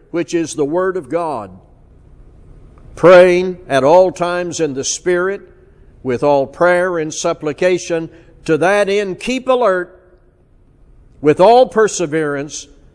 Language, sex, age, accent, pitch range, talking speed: English, male, 60-79, American, 150-215 Hz, 120 wpm